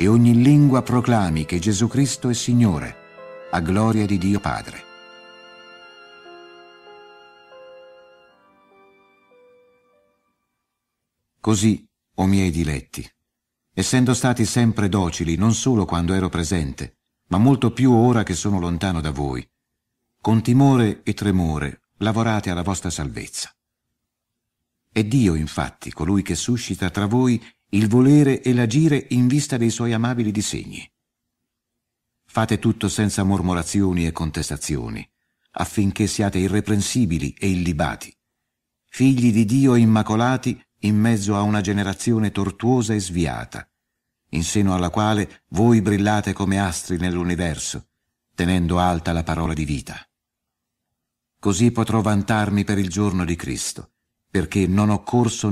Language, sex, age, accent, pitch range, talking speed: Italian, male, 50-69, native, 90-120 Hz, 120 wpm